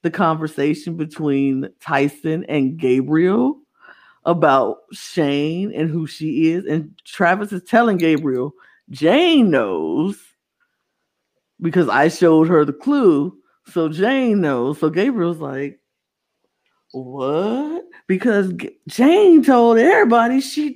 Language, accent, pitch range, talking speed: English, American, 145-235 Hz, 105 wpm